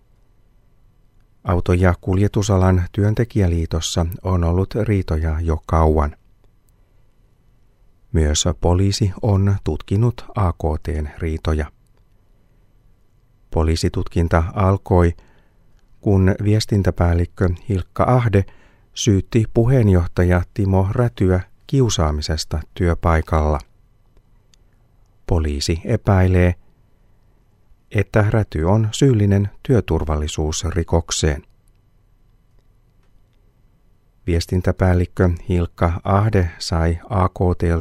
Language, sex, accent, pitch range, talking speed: Finnish, male, native, 85-110 Hz, 60 wpm